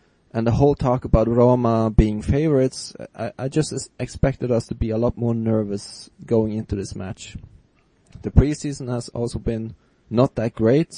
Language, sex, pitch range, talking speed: English, male, 105-125 Hz, 170 wpm